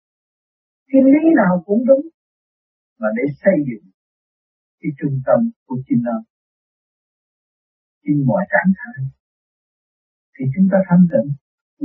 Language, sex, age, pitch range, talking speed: Vietnamese, male, 60-79, 135-190 Hz, 120 wpm